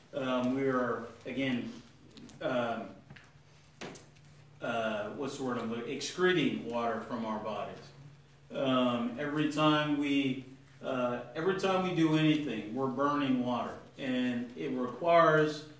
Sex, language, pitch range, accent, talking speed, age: male, English, 125-145 Hz, American, 120 wpm, 40-59